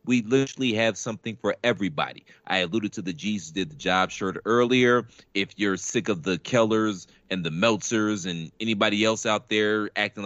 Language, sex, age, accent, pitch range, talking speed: English, male, 40-59, American, 105-145 Hz, 180 wpm